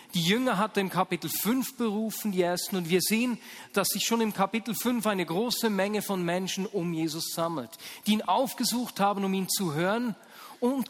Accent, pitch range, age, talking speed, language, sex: German, 175-220 Hz, 40-59, 195 wpm, German, male